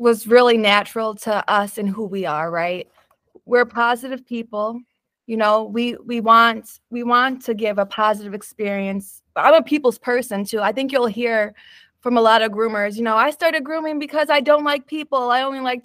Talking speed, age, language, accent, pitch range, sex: 195 wpm, 20-39, English, American, 210-255 Hz, female